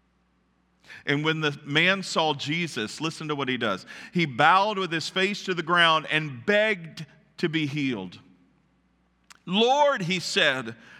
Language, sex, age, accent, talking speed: English, male, 50-69, American, 145 wpm